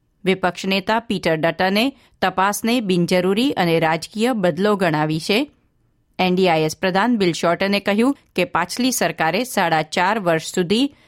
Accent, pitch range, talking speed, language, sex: native, 175-230 Hz, 120 wpm, Gujarati, female